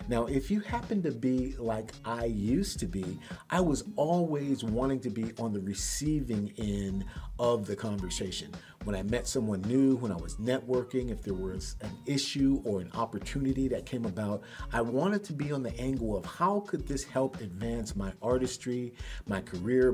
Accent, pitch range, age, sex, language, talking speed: American, 105-130 Hz, 50-69, male, English, 185 wpm